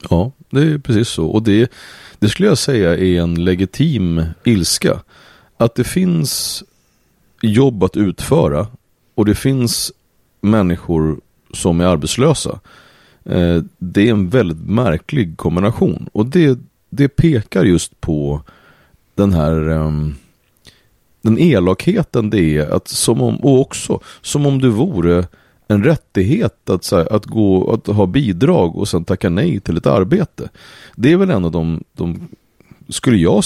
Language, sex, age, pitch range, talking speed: Swedish, male, 30-49, 85-120 Hz, 145 wpm